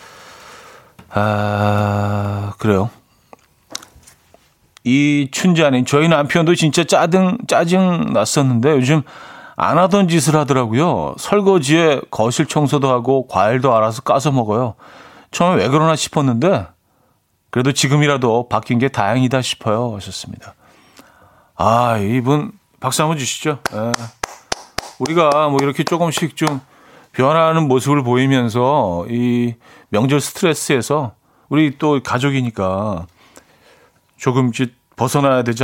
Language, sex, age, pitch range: Korean, male, 40-59, 120-160 Hz